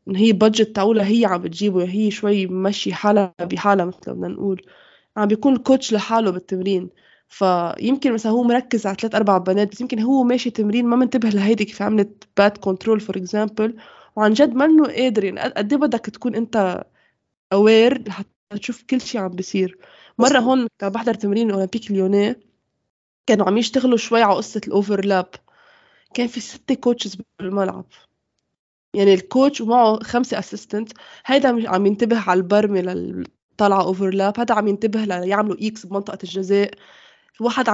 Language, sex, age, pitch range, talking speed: Arabic, female, 20-39, 195-235 Hz, 150 wpm